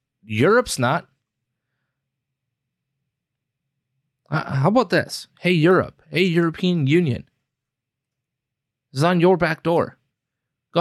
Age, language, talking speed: 30-49, English, 100 wpm